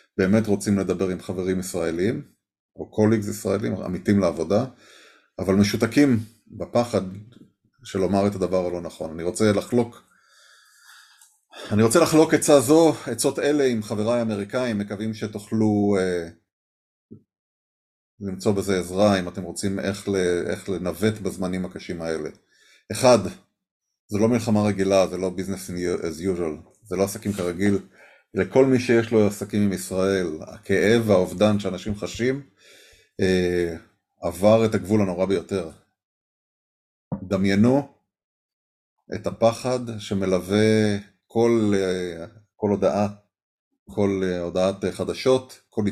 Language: Hebrew